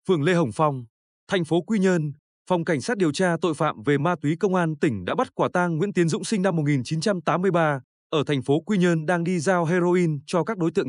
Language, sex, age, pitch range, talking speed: Vietnamese, male, 20-39, 145-195 Hz, 240 wpm